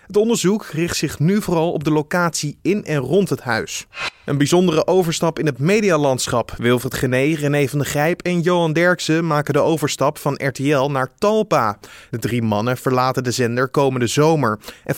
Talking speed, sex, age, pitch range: 180 wpm, male, 20-39, 125-160 Hz